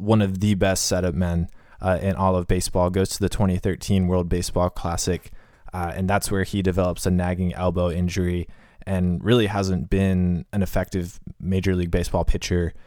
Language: English